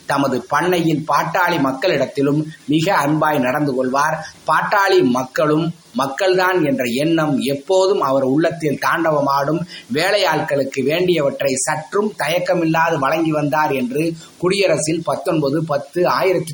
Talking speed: 100 wpm